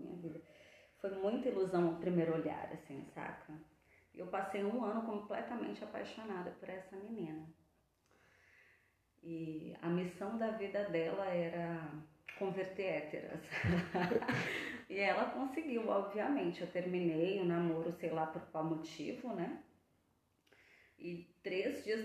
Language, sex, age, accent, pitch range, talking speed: Portuguese, female, 20-39, Brazilian, 170-215 Hz, 125 wpm